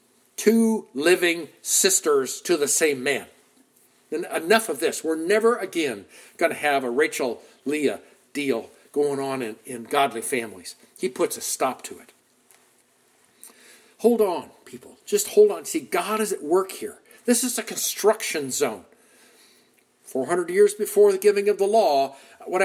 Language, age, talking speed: English, 50-69, 155 wpm